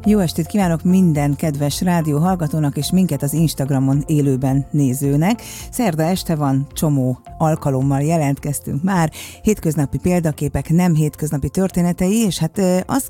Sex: female